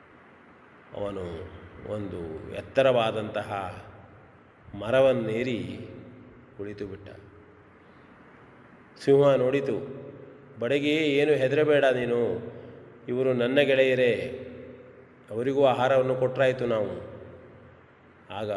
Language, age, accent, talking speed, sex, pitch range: Kannada, 30-49, native, 65 wpm, male, 105-130 Hz